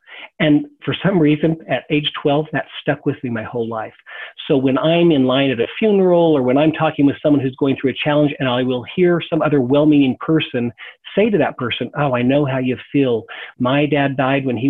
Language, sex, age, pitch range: English, male, 40-59, 135-170 Hz